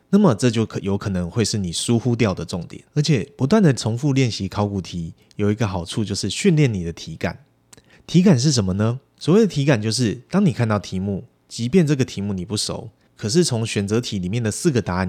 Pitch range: 95-130 Hz